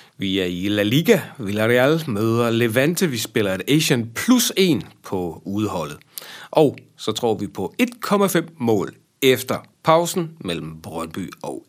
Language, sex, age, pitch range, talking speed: Danish, male, 40-59, 105-160 Hz, 145 wpm